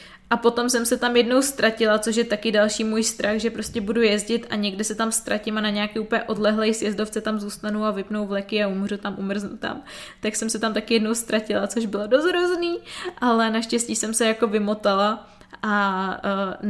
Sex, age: female, 20-39